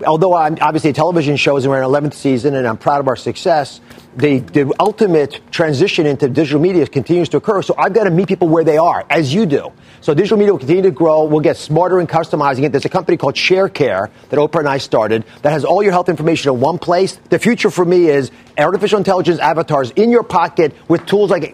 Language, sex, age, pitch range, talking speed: English, male, 40-59, 145-185 Hz, 235 wpm